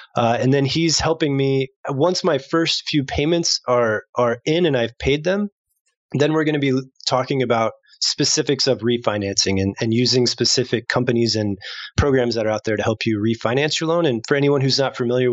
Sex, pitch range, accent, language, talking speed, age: male, 115-145 Hz, American, English, 200 wpm, 20-39